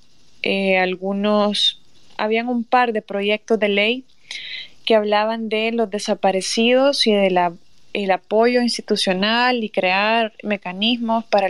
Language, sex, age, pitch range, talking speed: Spanish, female, 20-39, 195-225 Hz, 120 wpm